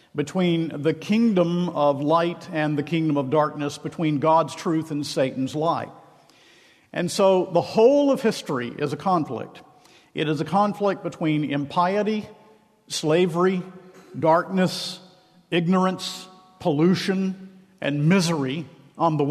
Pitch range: 145-190 Hz